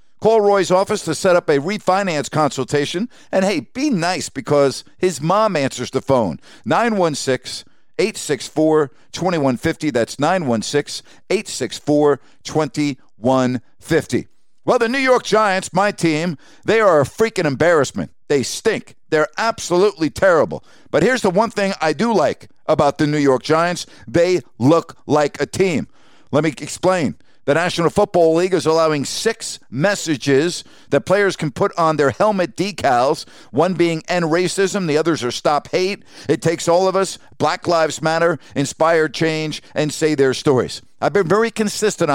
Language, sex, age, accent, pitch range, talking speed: English, male, 50-69, American, 150-195 Hz, 150 wpm